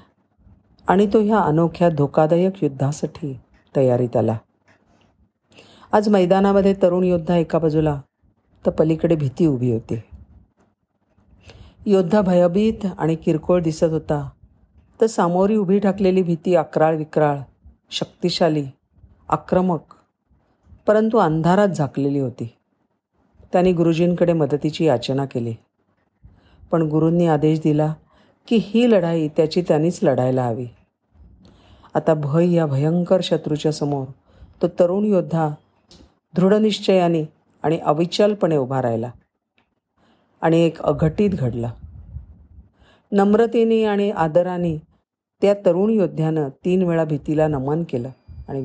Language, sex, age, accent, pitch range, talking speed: Marathi, female, 50-69, native, 120-180 Hz, 105 wpm